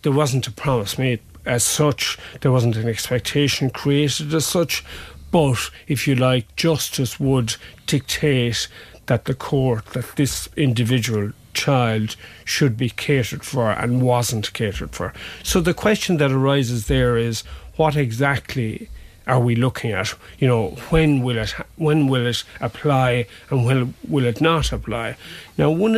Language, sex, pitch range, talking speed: English, male, 115-140 Hz, 150 wpm